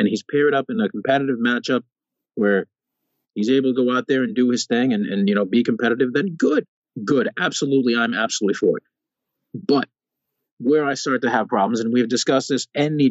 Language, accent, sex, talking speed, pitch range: English, American, male, 205 wpm, 115-155 Hz